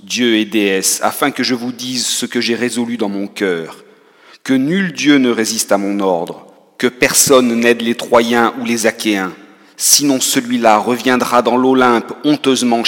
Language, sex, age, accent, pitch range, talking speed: French, male, 40-59, French, 105-130 Hz, 170 wpm